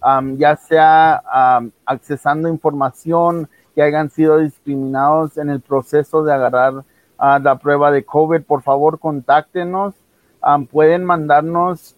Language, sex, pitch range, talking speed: English, male, 145-170 Hz, 130 wpm